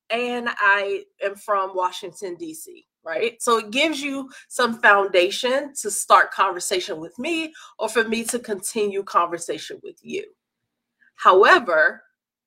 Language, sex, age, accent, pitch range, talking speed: English, female, 30-49, American, 205-290 Hz, 130 wpm